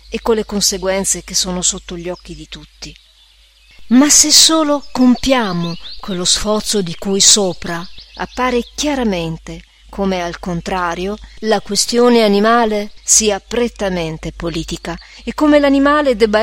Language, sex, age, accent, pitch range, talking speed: Italian, female, 40-59, native, 185-245 Hz, 130 wpm